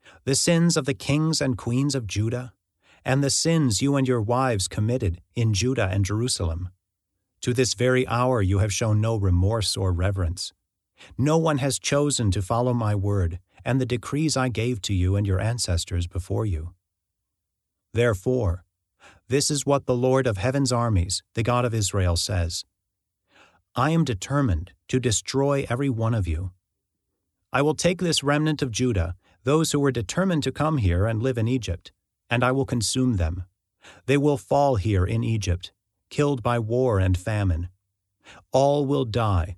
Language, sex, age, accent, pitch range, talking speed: English, male, 40-59, American, 95-130 Hz, 170 wpm